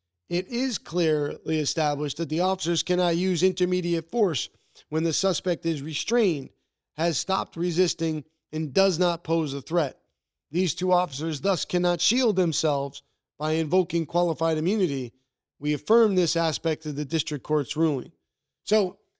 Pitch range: 155-190 Hz